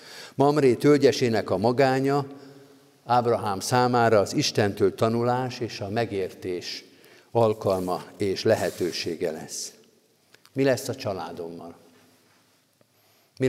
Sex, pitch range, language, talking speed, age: male, 110-135 Hz, Hungarian, 95 wpm, 50-69